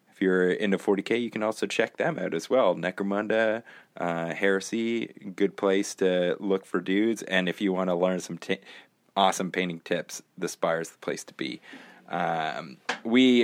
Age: 30-49